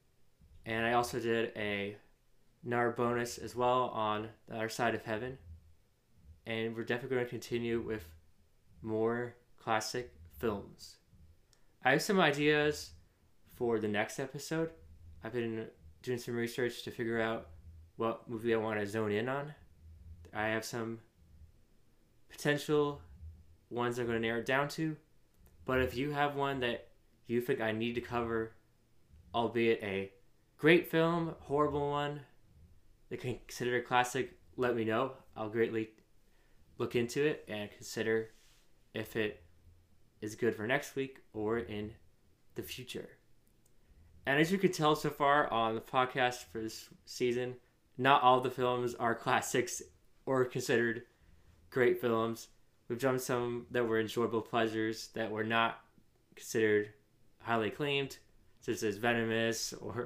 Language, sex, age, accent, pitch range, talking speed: English, male, 20-39, American, 105-125 Hz, 145 wpm